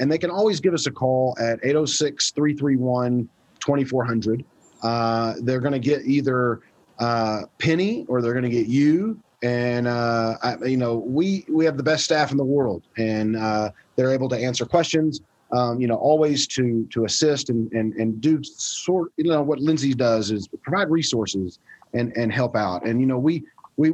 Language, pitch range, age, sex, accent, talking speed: English, 110-145 Hz, 30-49, male, American, 185 wpm